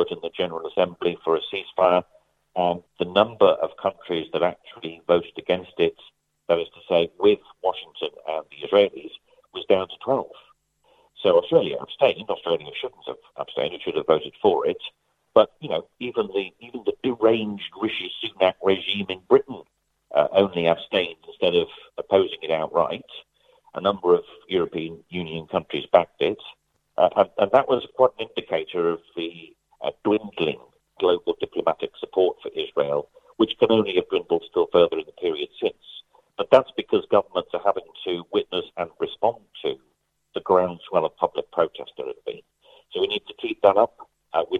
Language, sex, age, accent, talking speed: English, male, 50-69, British, 165 wpm